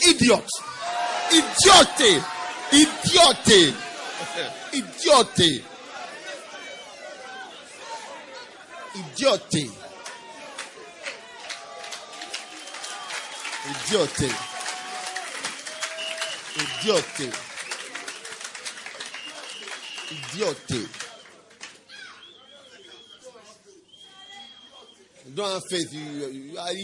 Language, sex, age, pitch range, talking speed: English, male, 50-69, 195-280 Hz, 35 wpm